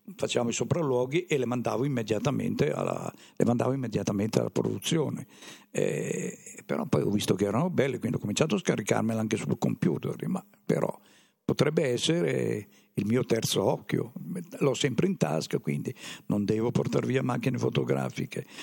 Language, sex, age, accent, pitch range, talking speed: Italian, male, 60-79, native, 105-125 Hz, 160 wpm